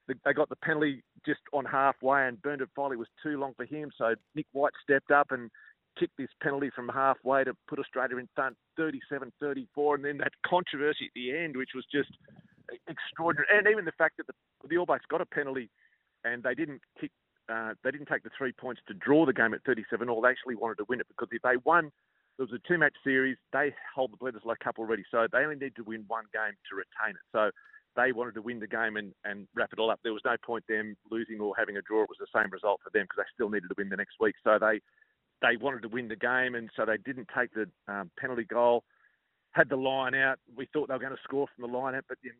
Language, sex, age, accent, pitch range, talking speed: English, male, 40-59, Australian, 115-145 Hz, 250 wpm